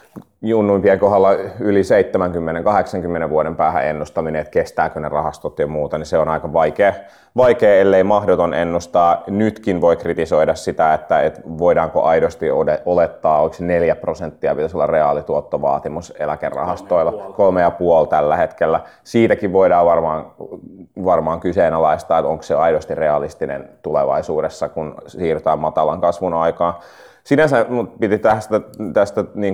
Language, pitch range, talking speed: Finnish, 85-105 Hz, 125 wpm